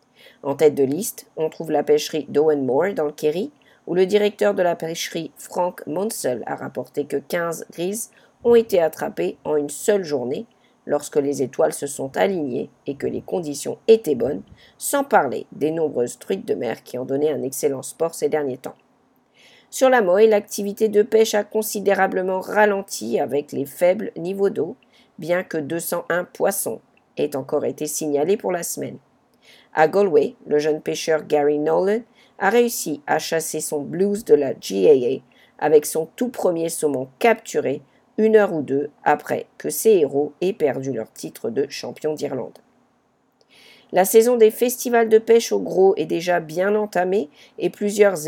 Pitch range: 150-210 Hz